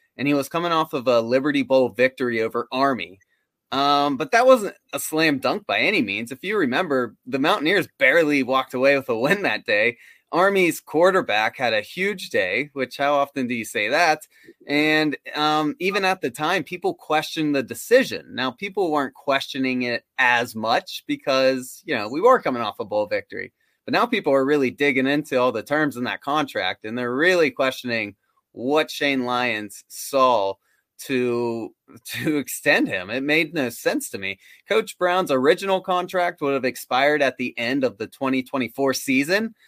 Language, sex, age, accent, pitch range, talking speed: English, male, 20-39, American, 130-170 Hz, 180 wpm